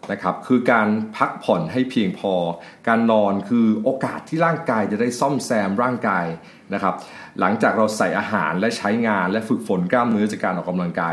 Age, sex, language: 30-49, male, Thai